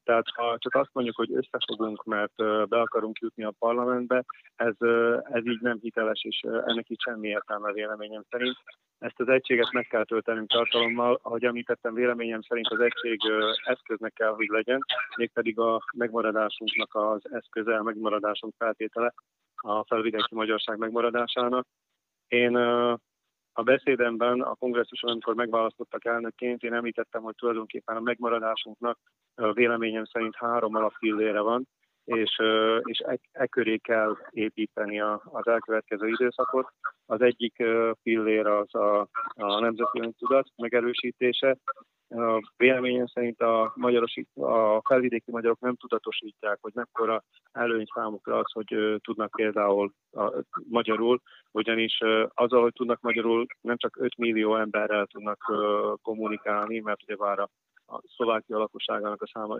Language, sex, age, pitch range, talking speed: Hungarian, male, 30-49, 110-120 Hz, 135 wpm